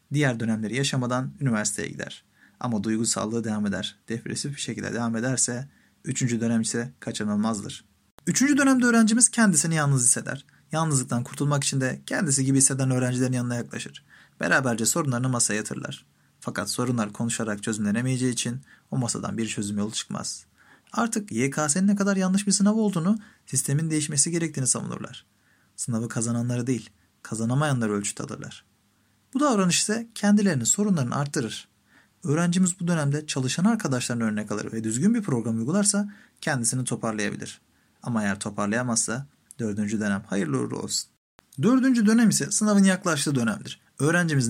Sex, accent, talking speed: male, native, 140 wpm